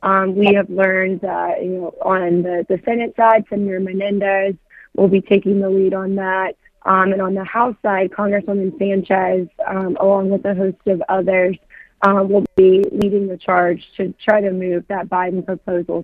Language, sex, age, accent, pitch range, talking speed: English, female, 20-39, American, 190-210 Hz, 185 wpm